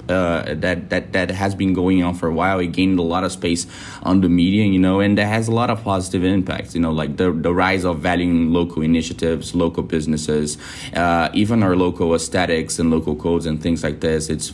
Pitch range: 80-95 Hz